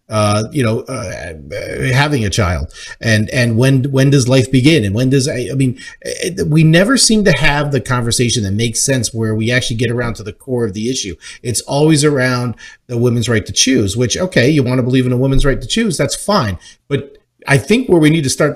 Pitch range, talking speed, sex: 115-155 Hz, 230 wpm, male